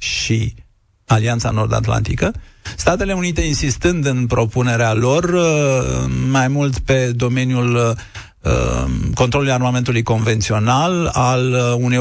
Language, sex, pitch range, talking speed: Romanian, male, 115-130 Hz, 90 wpm